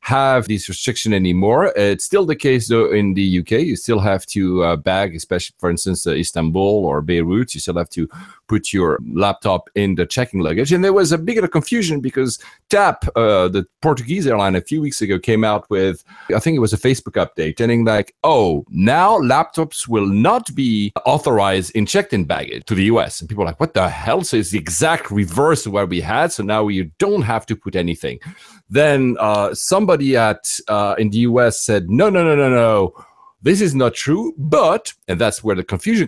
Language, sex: English, male